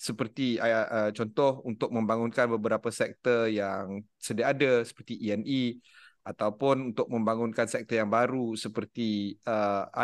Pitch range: 115-155 Hz